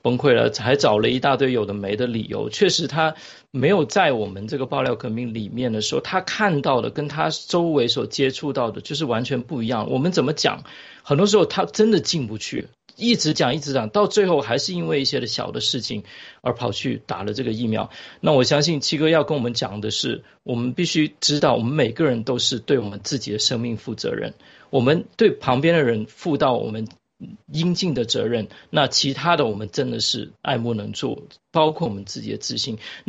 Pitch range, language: 120-160 Hz, Chinese